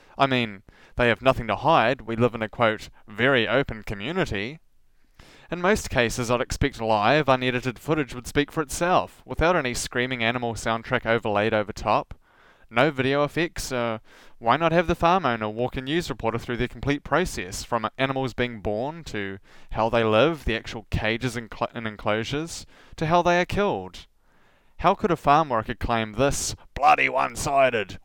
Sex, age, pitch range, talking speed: male, 20-39, 110-140 Hz, 170 wpm